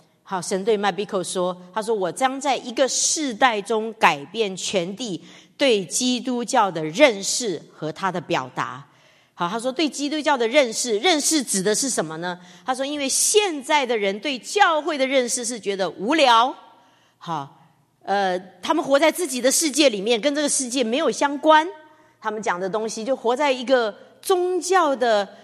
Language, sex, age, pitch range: English, female, 40-59, 180-270 Hz